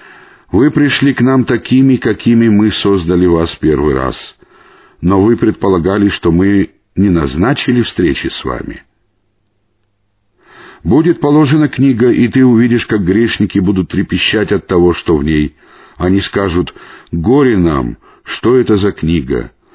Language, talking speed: Russian, 135 wpm